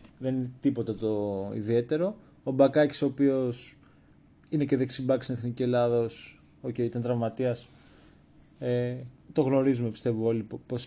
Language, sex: Greek, male